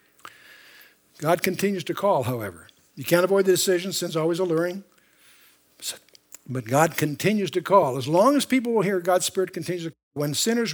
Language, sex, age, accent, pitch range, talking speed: English, male, 60-79, American, 135-185 Hz, 175 wpm